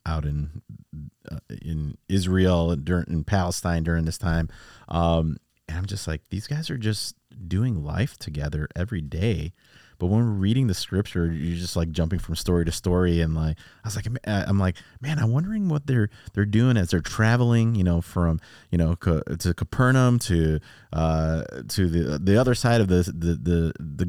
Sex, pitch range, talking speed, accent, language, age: male, 85-110 Hz, 190 wpm, American, English, 30-49